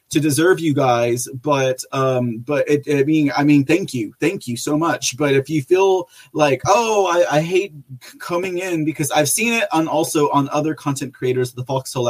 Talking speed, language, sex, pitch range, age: 205 wpm, English, male, 135-170 Hz, 30-49